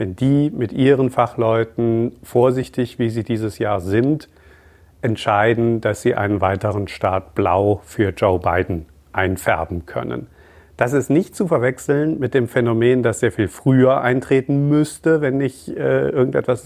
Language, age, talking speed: German, 40-59, 150 wpm